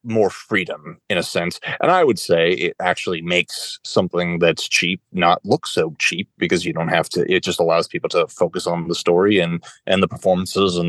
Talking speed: 210 wpm